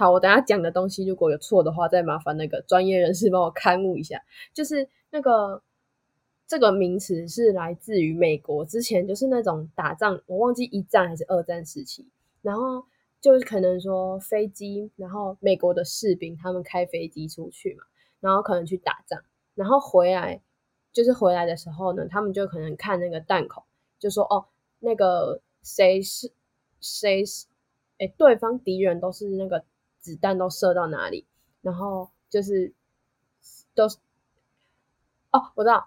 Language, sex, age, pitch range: Chinese, female, 10-29, 175-215 Hz